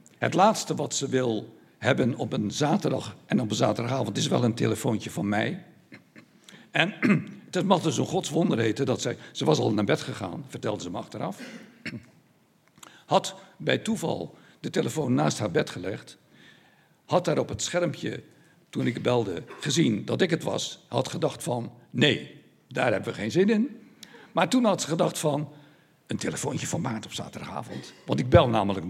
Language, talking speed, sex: Dutch, 180 wpm, male